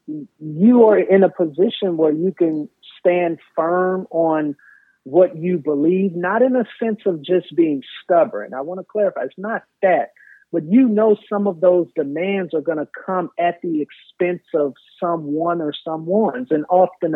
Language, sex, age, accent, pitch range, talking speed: English, male, 40-59, American, 140-180 Hz, 170 wpm